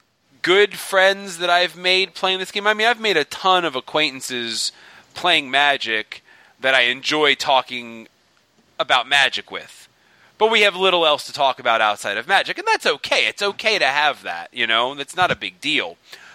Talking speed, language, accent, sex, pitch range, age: 185 wpm, English, American, male, 115-185 Hz, 30-49